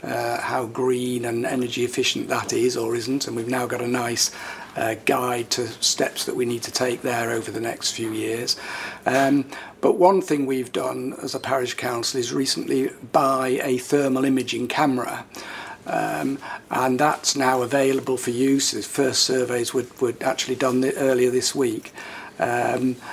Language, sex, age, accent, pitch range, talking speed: English, male, 50-69, British, 120-135 Hz, 170 wpm